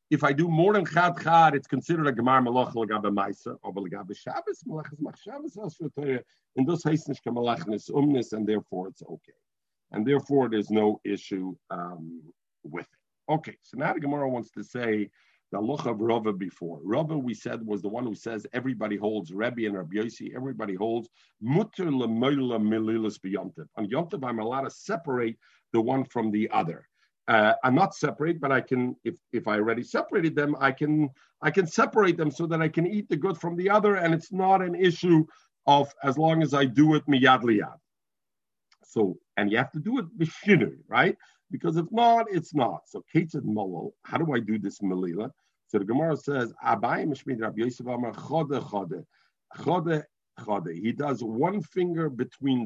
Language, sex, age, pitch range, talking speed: English, male, 50-69, 115-165 Hz, 175 wpm